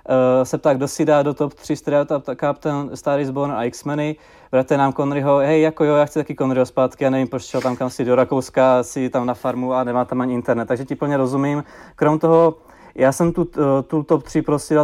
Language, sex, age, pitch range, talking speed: Czech, male, 20-39, 130-145 Hz, 220 wpm